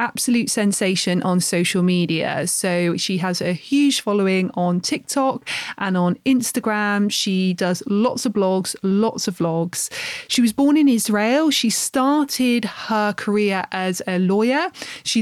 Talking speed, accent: 145 wpm, British